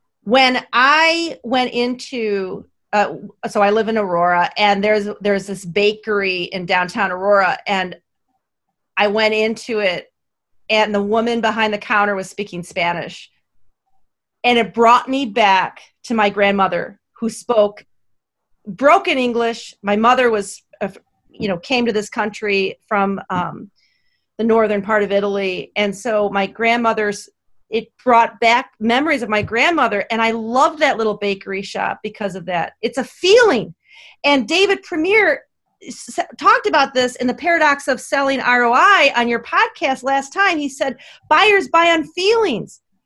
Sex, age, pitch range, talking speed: female, 40-59, 205-310 Hz, 150 wpm